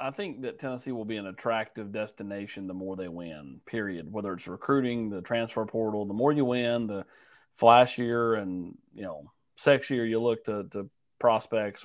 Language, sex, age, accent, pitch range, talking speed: English, male, 30-49, American, 105-125 Hz, 175 wpm